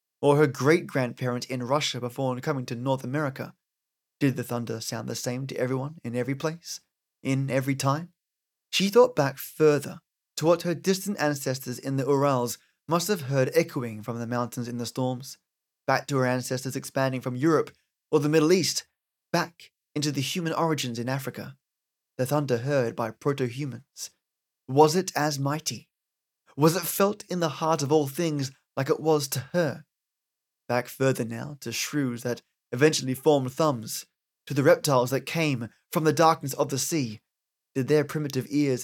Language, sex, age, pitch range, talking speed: English, male, 20-39, 120-150 Hz, 170 wpm